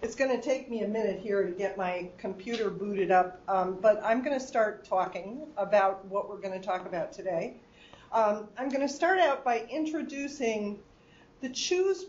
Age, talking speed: 50-69, 195 wpm